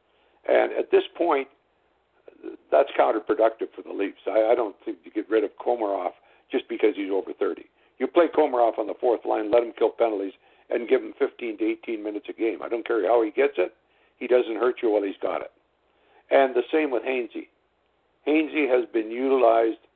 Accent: American